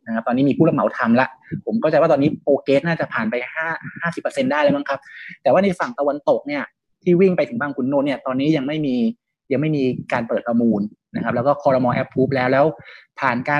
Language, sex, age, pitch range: Thai, male, 30-49, 130-190 Hz